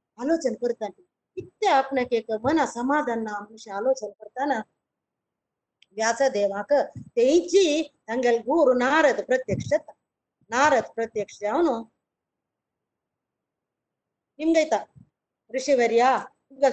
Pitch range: 245-315 Hz